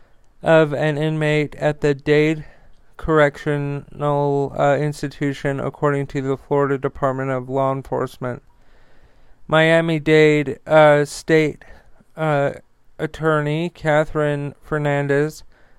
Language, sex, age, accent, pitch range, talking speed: English, male, 40-59, American, 140-155 Hz, 90 wpm